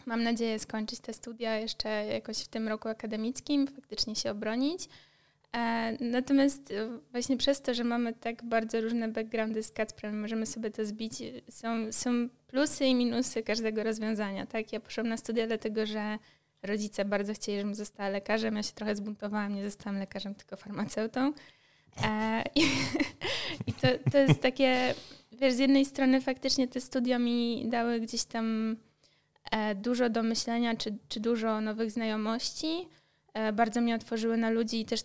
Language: Polish